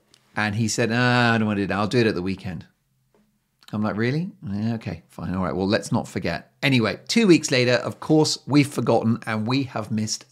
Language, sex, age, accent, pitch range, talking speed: English, male, 40-59, British, 105-150 Hz, 220 wpm